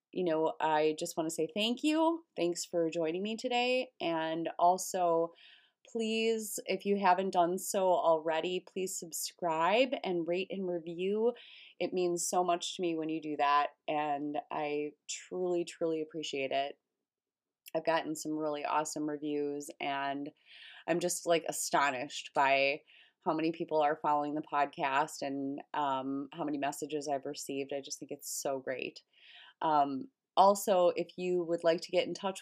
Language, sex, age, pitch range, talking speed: English, female, 20-39, 150-180 Hz, 160 wpm